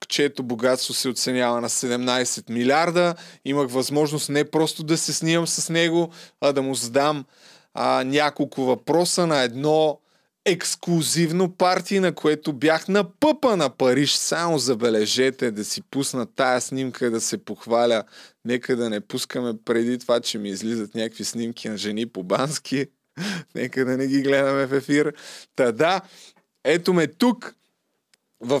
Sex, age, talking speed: male, 20-39, 145 wpm